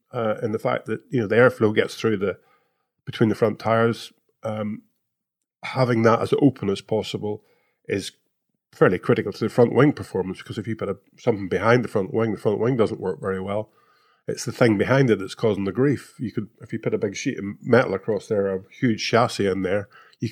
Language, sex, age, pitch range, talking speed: English, male, 30-49, 100-120 Hz, 220 wpm